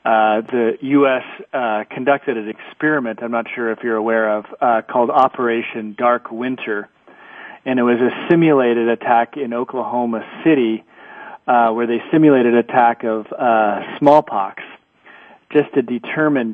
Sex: male